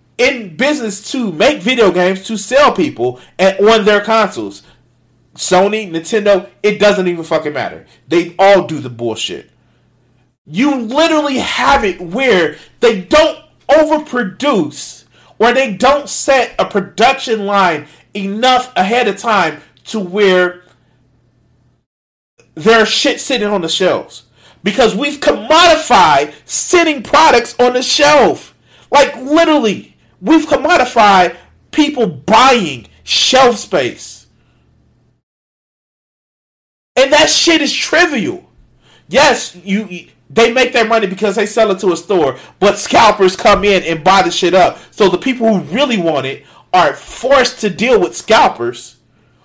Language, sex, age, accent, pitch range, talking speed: English, male, 40-59, American, 190-275 Hz, 130 wpm